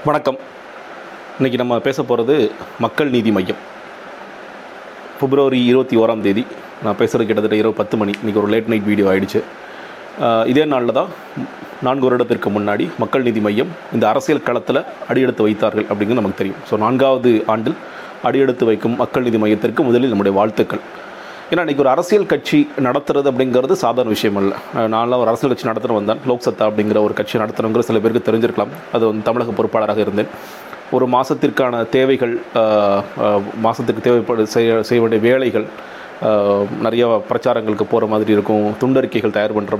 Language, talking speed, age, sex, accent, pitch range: Tamil, 150 wpm, 30-49, male, native, 105-125 Hz